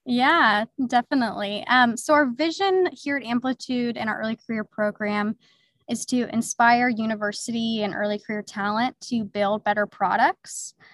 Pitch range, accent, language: 205-245 Hz, American, English